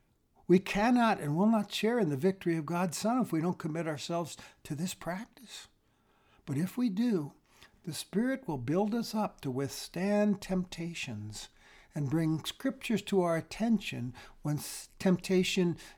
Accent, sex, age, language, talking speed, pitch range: American, male, 60-79, English, 155 wpm, 130-185 Hz